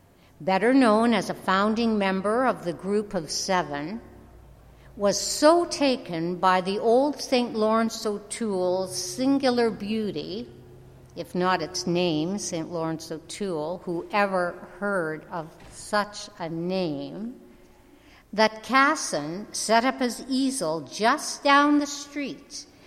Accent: American